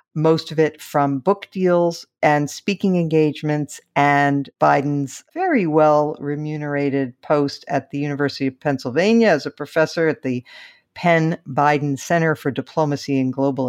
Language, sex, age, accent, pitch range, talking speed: English, female, 50-69, American, 145-190 Hz, 140 wpm